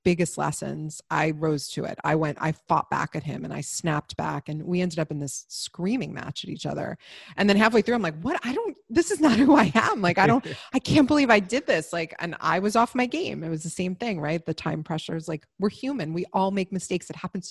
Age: 30-49